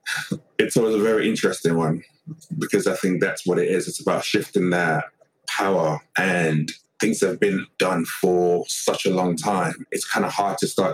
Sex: male